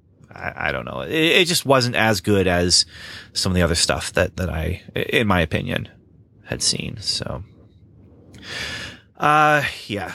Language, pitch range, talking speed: English, 105-140 Hz, 160 wpm